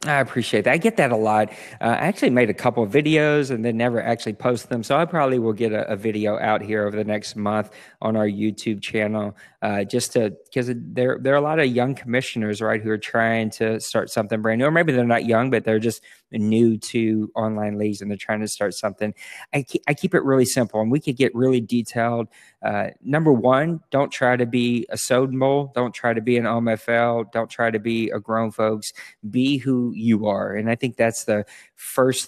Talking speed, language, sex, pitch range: 230 wpm, English, male, 110-125 Hz